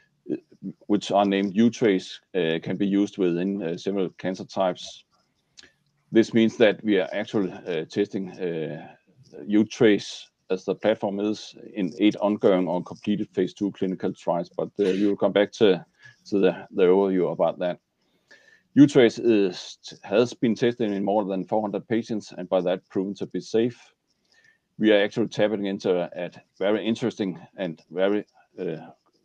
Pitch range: 95-105 Hz